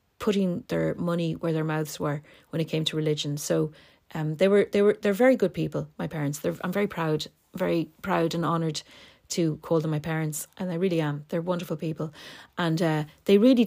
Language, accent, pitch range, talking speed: English, Irish, 160-200 Hz, 210 wpm